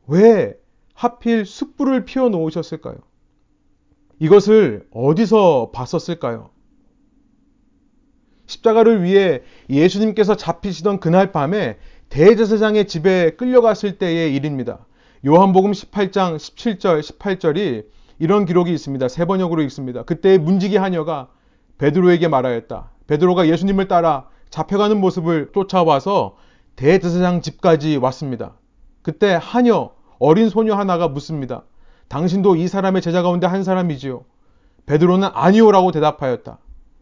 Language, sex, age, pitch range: Korean, male, 30-49, 160-220 Hz